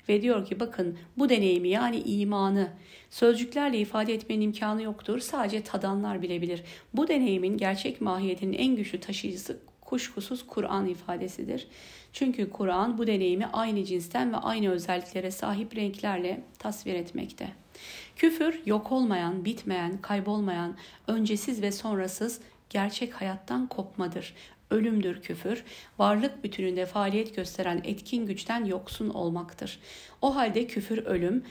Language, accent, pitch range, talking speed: Turkish, native, 185-235 Hz, 120 wpm